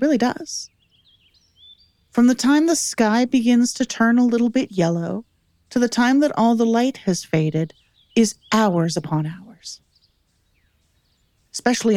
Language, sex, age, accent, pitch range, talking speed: English, female, 40-59, American, 165-240 Hz, 140 wpm